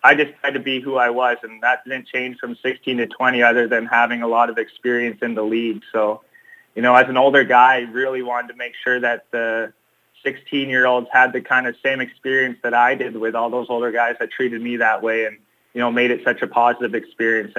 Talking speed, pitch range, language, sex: 245 wpm, 115-130 Hz, English, male